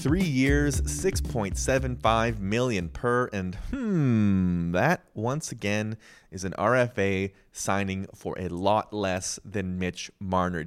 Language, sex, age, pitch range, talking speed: English, male, 30-49, 95-150 Hz, 120 wpm